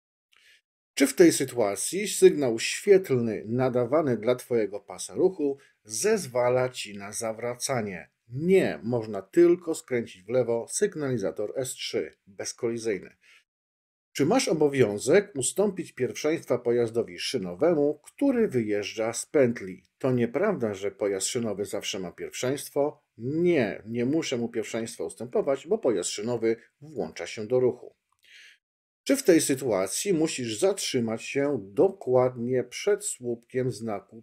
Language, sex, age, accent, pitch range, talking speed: Polish, male, 50-69, native, 115-145 Hz, 115 wpm